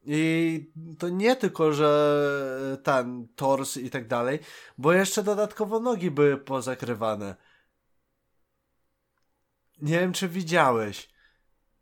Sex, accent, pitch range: male, native, 130-165 Hz